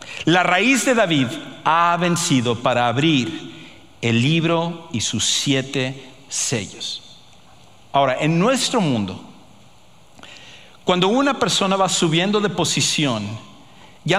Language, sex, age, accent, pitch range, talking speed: English, male, 50-69, Mexican, 140-175 Hz, 110 wpm